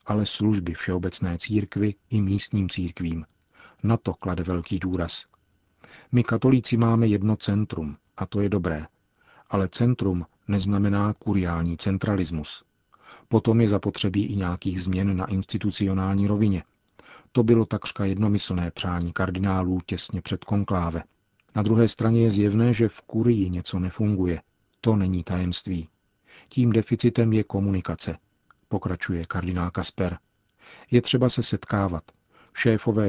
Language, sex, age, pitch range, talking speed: Czech, male, 40-59, 90-105 Hz, 125 wpm